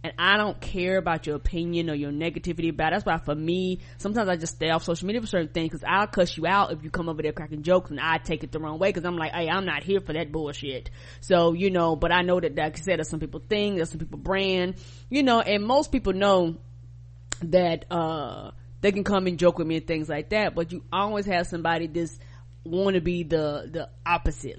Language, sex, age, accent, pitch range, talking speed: English, female, 20-39, American, 155-195 Hz, 250 wpm